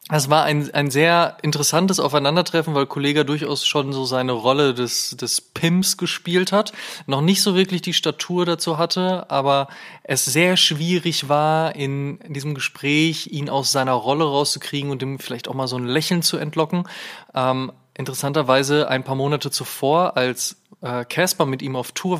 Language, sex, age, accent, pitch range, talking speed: German, male, 20-39, German, 130-155 Hz, 175 wpm